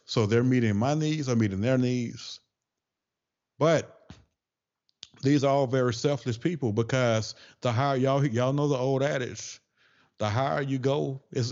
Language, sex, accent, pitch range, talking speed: English, male, American, 100-125 Hz, 155 wpm